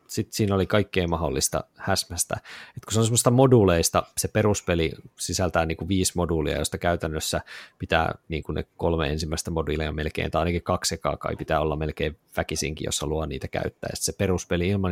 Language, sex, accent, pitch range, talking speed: Finnish, male, native, 85-115 Hz, 175 wpm